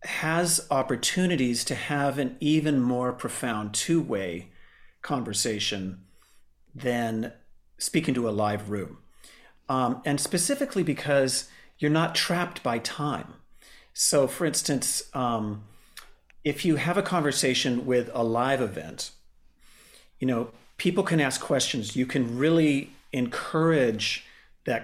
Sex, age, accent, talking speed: male, 40-59, American, 120 wpm